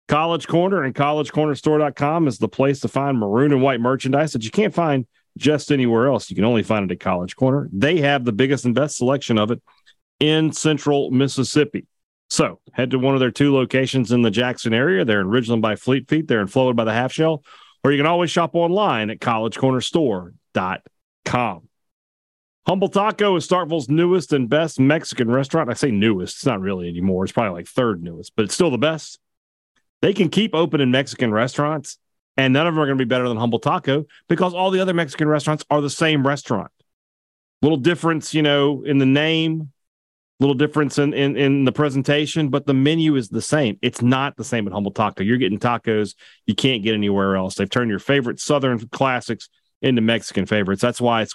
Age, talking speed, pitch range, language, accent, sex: 40-59, 205 wpm, 110-150 Hz, English, American, male